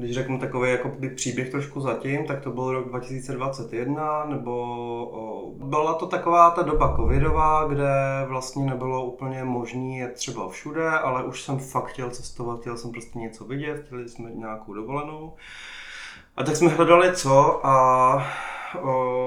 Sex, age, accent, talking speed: male, 20-39, native, 155 wpm